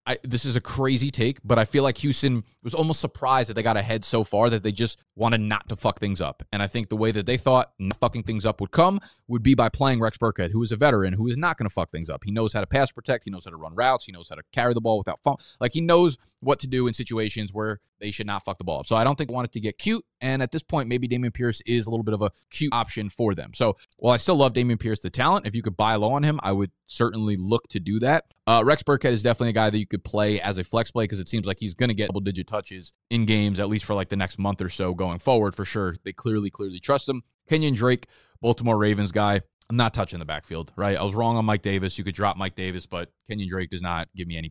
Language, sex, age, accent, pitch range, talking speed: English, male, 20-39, American, 95-125 Hz, 300 wpm